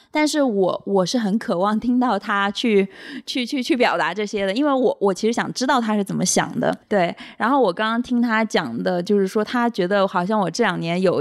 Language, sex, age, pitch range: Chinese, female, 20-39, 190-240 Hz